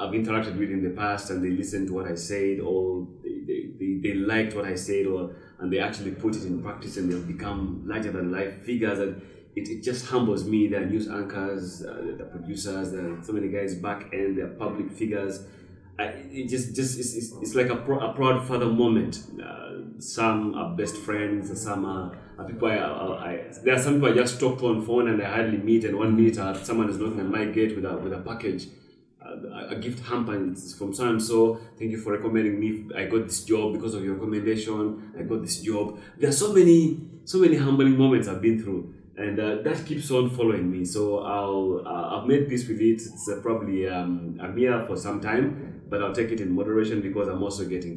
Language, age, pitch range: English, 30-49, 95-115 Hz